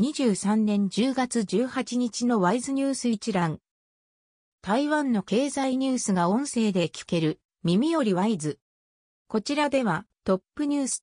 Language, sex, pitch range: Japanese, female, 180-270 Hz